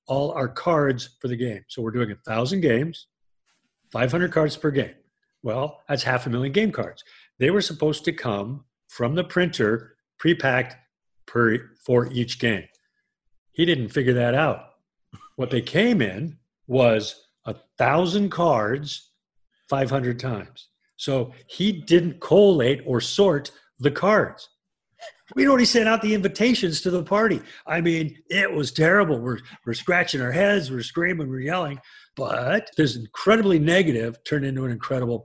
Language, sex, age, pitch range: English, male, 50-69, 125-175 Hz